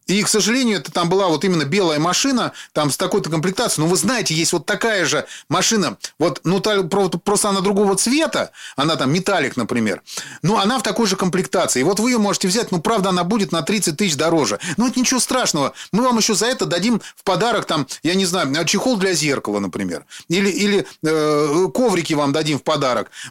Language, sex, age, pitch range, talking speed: Russian, male, 30-49, 160-210 Hz, 210 wpm